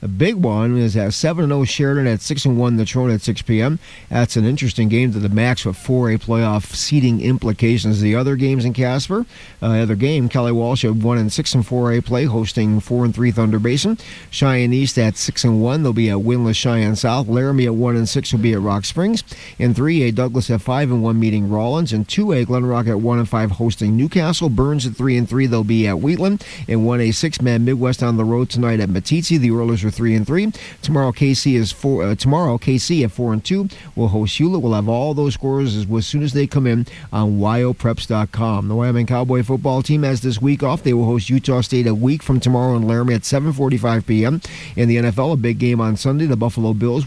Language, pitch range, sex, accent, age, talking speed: English, 115-135 Hz, male, American, 40-59, 235 wpm